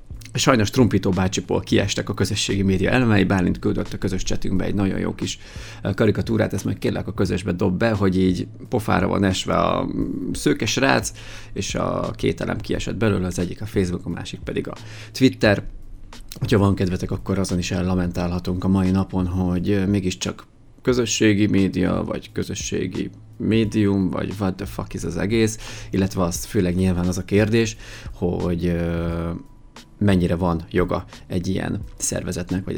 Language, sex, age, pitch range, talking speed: Hungarian, male, 30-49, 95-110 Hz, 155 wpm